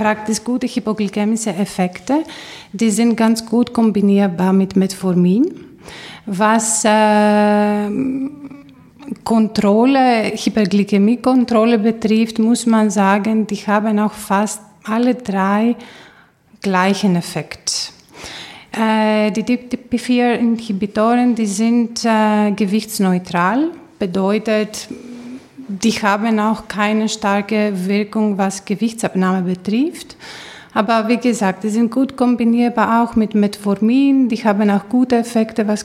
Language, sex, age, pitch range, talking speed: German, female, 30-49, 205-230 Hz, 95 wpm